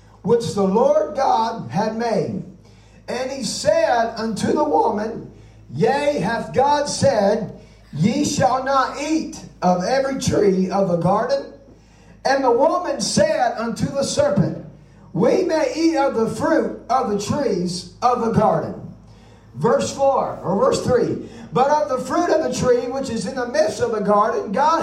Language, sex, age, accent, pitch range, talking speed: English, male, 50-69, American, 215-290 Hz, 160 wpm